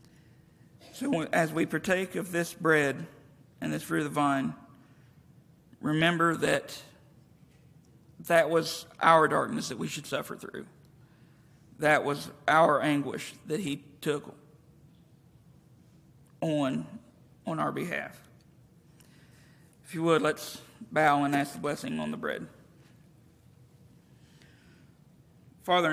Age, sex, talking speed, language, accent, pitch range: 50-69, male, 110 wpm, English, American, 140-155 Hz